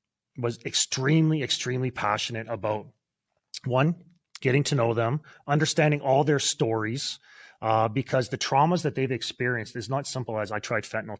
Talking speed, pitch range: 150 wpm, 115-140 Hz